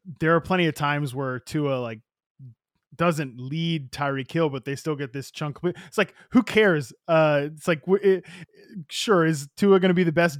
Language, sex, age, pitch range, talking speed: English, male, 20-39, 130-165 Hz, 195 wpm